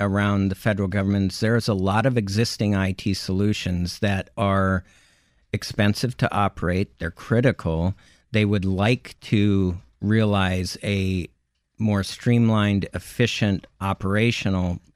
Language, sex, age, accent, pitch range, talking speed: English, male, 50-69, American, 95-110 Hz, 110 wpm